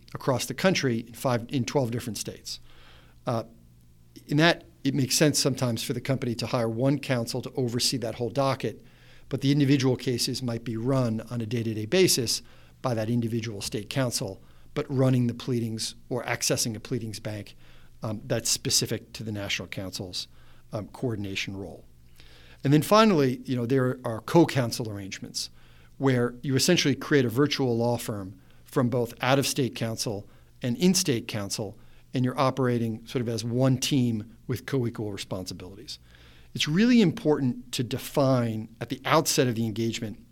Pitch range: 110-135 Hz